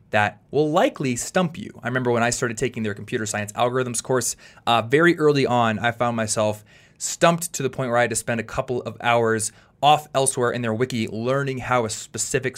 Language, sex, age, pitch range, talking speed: English, male, 20-39, 110-135 Hz, 215 wpm